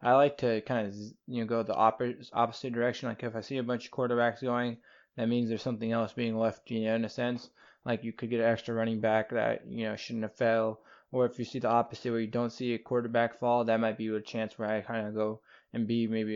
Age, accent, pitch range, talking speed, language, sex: 20-39, American, 110-120 Hz, 265 wpm, English, male